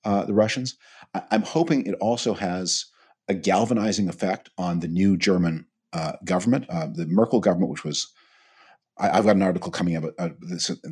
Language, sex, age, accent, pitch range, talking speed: English, male, 40-59, American, 85-110 Hz, 165 wpm